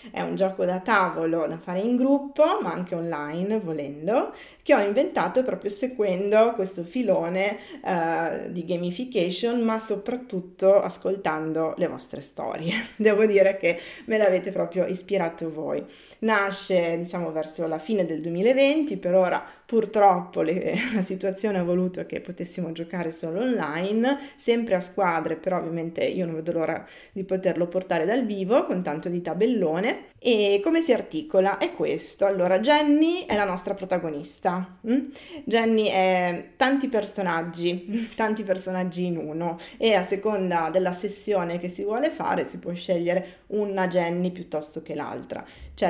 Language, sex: Italian, female